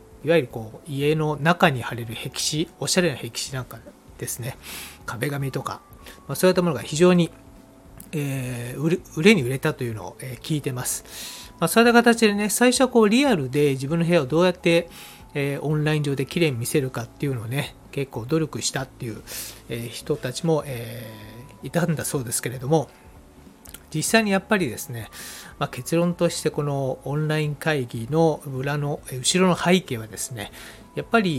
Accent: native